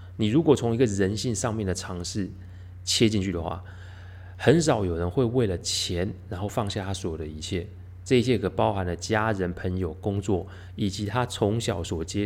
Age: 30-49